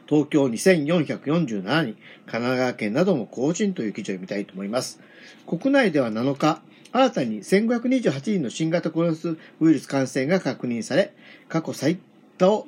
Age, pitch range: 50-69, 135-190 Hz